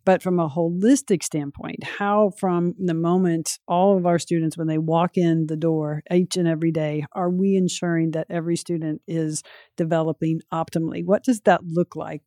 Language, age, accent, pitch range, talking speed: English, 50-69, American, 160-185 Hz, 180 wpm